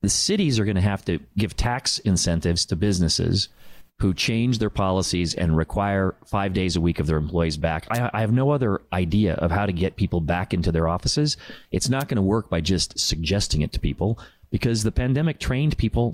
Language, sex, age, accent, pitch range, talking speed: English, male, 30-49, American, 90-115 Hz, 210 wpm